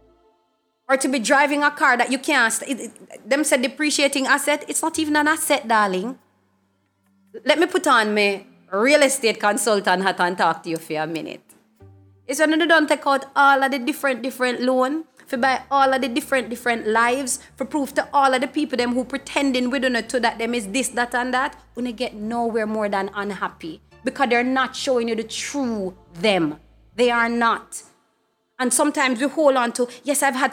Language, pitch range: English, 210-270 Hz